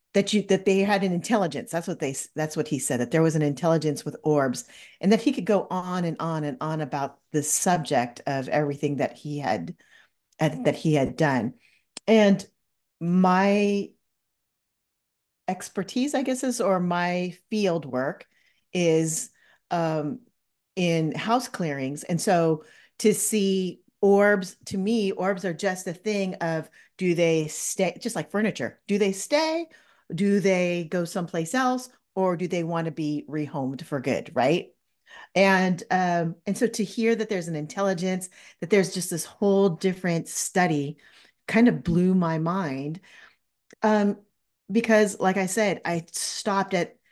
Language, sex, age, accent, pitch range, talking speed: English, female, 40-59, American, 155-200 Hz, 160 wpm